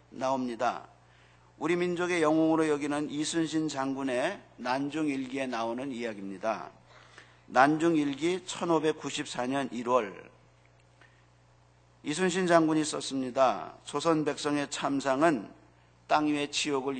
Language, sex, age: Korean, male, 50-69